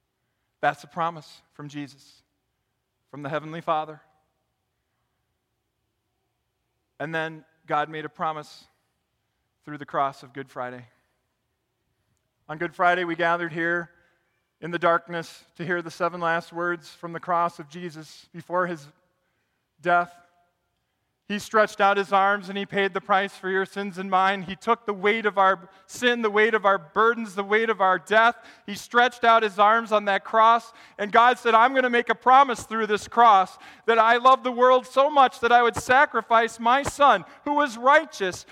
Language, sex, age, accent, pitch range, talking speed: English, male, 40-59, American, 170-230 Hz, 175 wpm